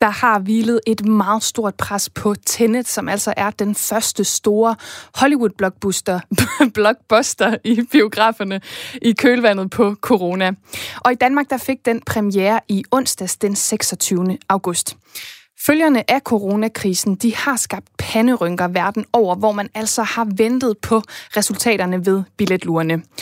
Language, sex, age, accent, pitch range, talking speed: Danish, female, 20-39, native, 195-235 Hz, 130 wpm